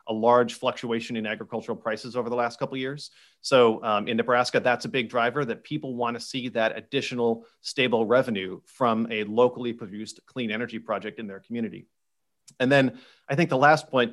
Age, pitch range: 30-49, 115-130 Hz